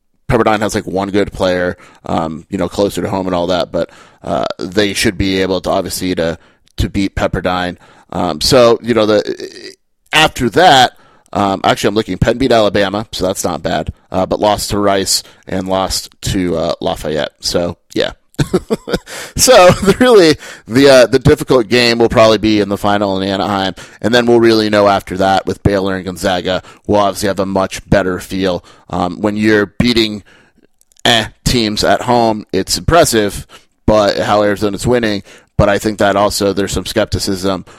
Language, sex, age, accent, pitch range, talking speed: English, male, 30-49, American, 95-110 Hz, 180 wpm